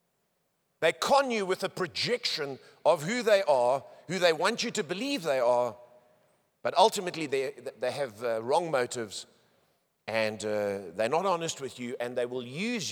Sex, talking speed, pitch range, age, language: male, 170 wpm, 120-175 Hz, 50-69, English